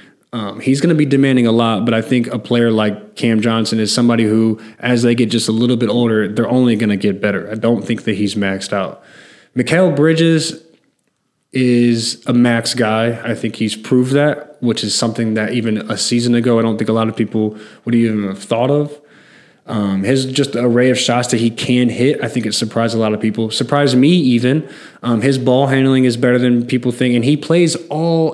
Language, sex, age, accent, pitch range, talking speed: English, male, 20-39, American, 110-130 Hz, 225 wpm